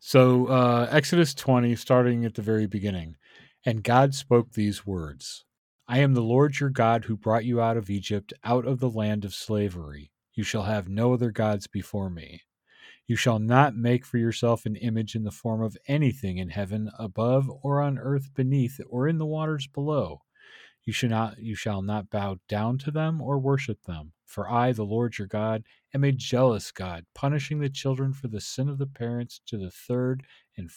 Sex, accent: male, American